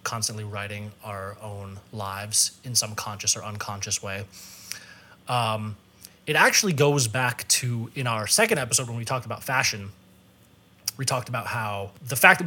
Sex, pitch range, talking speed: male, 110-145 Hz, 160 wpm